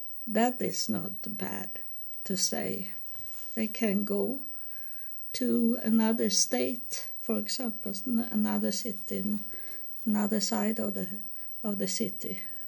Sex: female